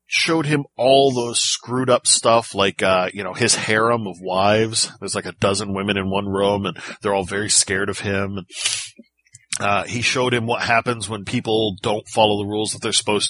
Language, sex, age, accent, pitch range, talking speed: English, male, 40-59, American, 100-120 Hz, 205 wpm